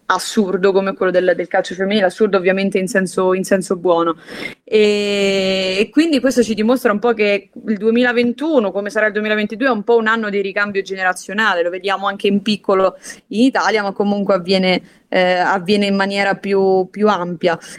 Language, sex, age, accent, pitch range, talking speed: Italian, female, 20-39, native, 190-225 Hz, 180 wpm